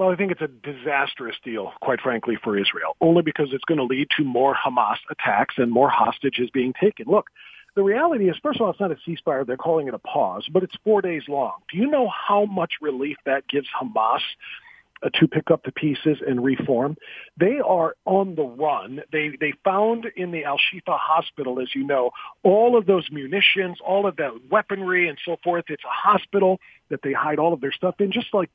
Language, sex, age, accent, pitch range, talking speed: English, male, 50-69, American, 155-225 Hz, 215 wpm